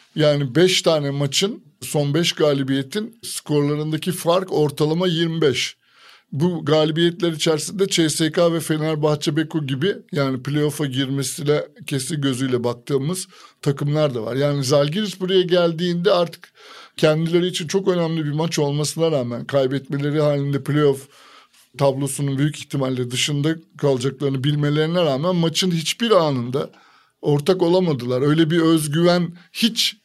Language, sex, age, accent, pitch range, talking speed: Turkish, male, 50-69, native, 140-175 Hz, 120 wpm